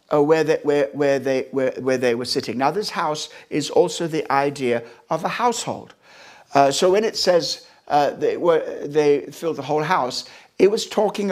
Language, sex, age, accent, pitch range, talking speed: English, male, 60-79, British, 140-170 Hz, 165 wpm